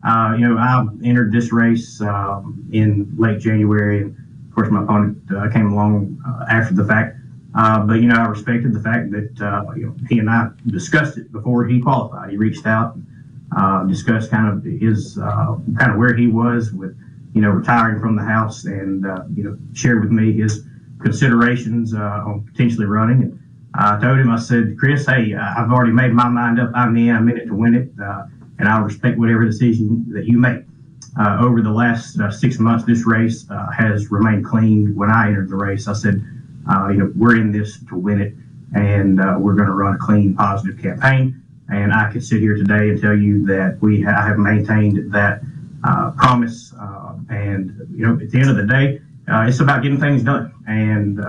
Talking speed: 210 wpm